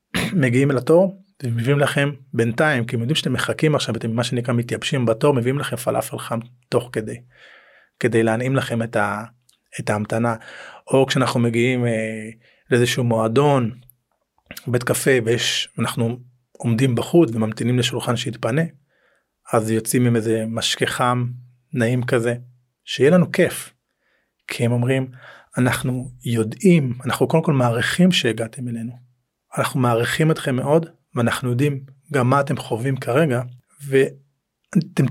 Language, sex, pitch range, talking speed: Hebrew, male, 120-140 Hz, 130 wpm